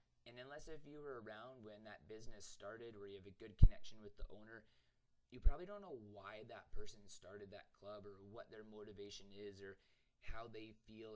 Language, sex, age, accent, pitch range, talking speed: English, male, 20-39, American, 100-115 Hz, 205 wpm